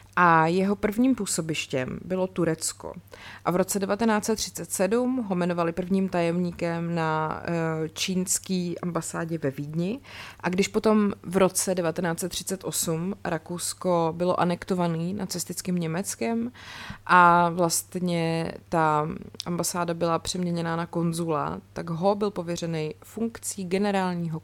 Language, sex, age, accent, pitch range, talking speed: Czech, female, 30-49, native, 160-190 Hz, 110 wpm